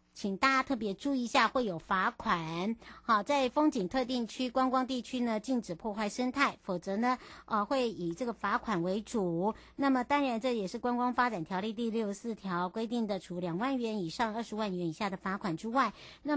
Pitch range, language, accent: 195-255 Hz, Chinese, American